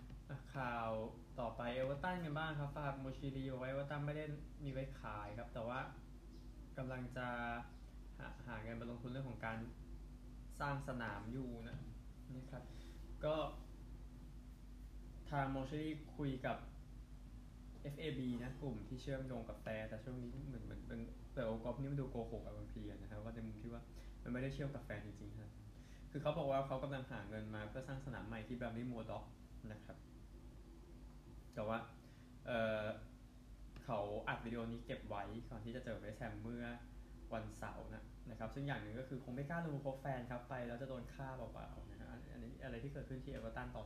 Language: Thai